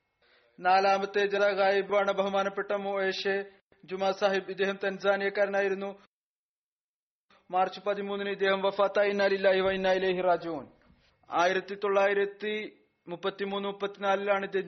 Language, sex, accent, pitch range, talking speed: Malayalam, male, native, 195-200 Hz, 65 wpm